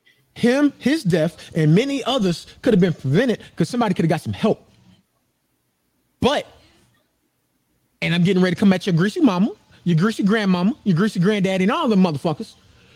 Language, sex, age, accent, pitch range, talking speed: English, male, 30-49, American, 150-210 Hz, 175 wpm